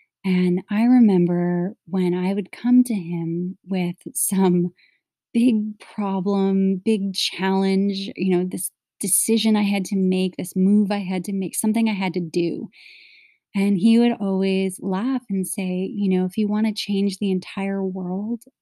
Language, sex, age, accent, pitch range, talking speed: English, female, 30-49, American, 185-220 Hz, 165 wpm